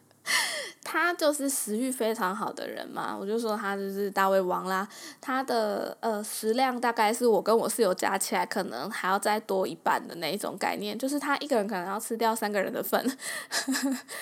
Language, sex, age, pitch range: Chinese, female, 10-29, 205-250 Hz